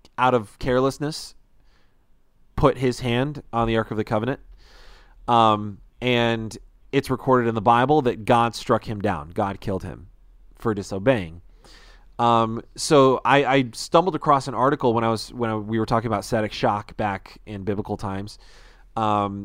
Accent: American